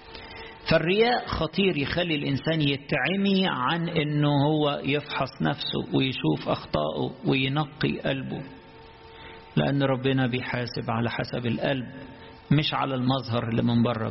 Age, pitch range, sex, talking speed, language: 50-69, 120-155 Hz, male, 110 wpm, English